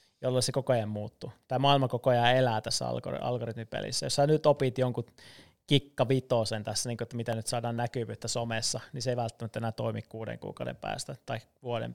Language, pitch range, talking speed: Finnish, 115-135 Hz, 195 wpm